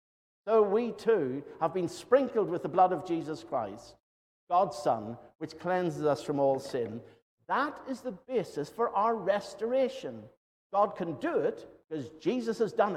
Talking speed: 165 wpm